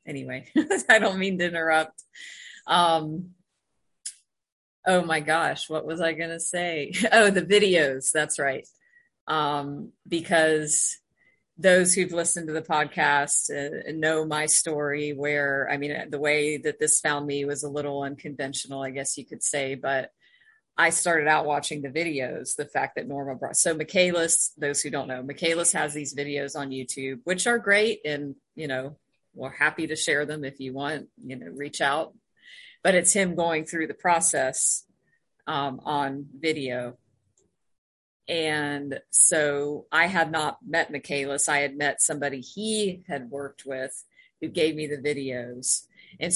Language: English